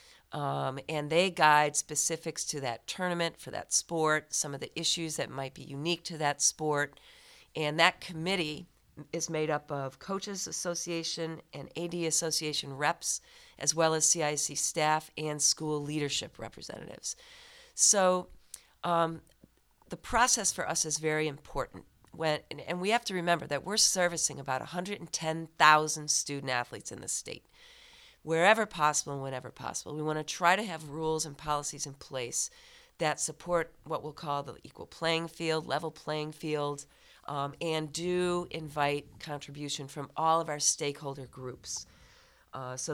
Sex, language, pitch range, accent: female, English, 145-170 Hz, American